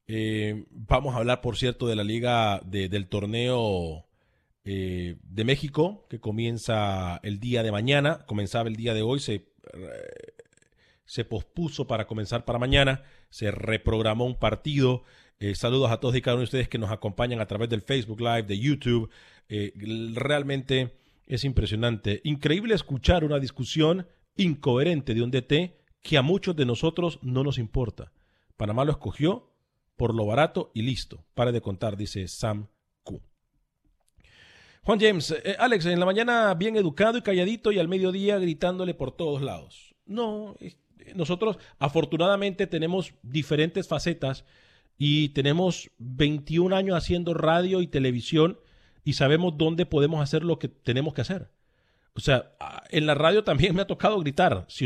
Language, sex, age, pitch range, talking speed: Spanish, male, 40-59, 115-165 Hz, 155 wpm